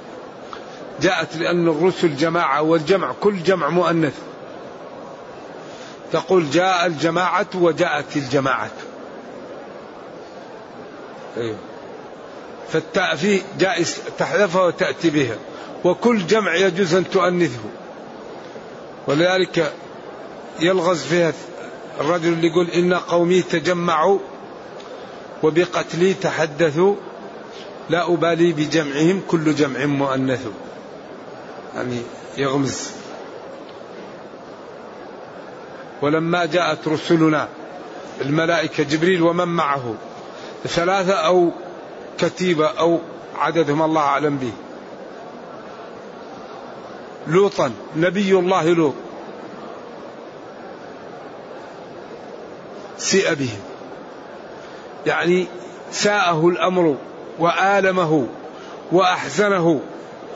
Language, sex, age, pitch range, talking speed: Arabic, male, 50-69, 155-180 Hz, 70 wpm